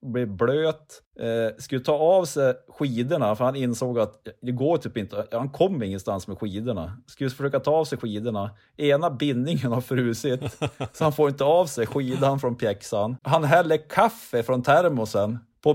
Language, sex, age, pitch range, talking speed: Swedish, male, 30-49, 110-145 Hz, 175 wpm